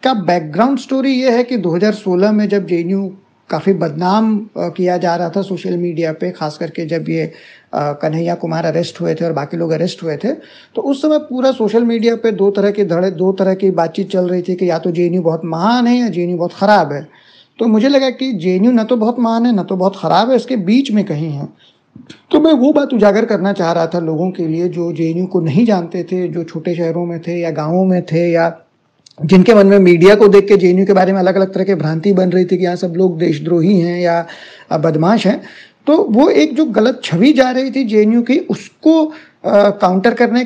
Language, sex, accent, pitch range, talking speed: Hindi, male, native, 175-245 Hz, 230 wpm